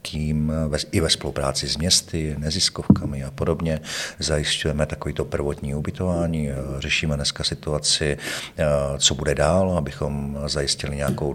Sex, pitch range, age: male, 70-80 Hz, 50-69